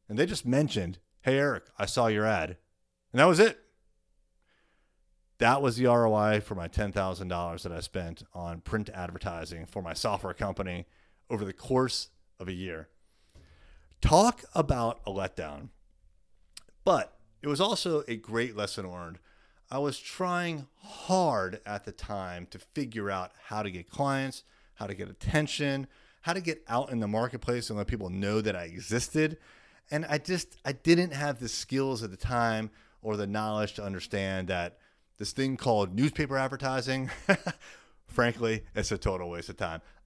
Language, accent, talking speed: English, American, 165 wpm